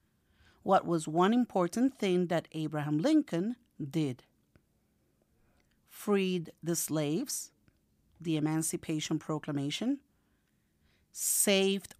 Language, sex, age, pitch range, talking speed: Spanish, female, 50-69, 160-220 Hz, 80 wpm